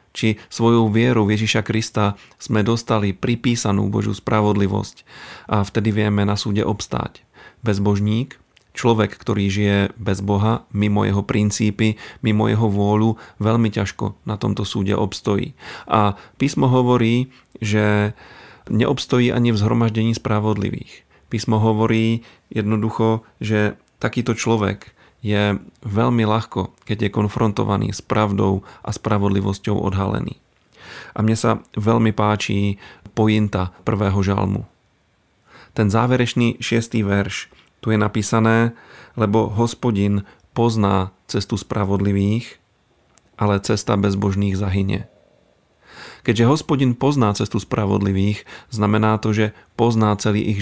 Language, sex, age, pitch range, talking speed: Slovak, male, 40-59, 100-115 Hz, 115 wpm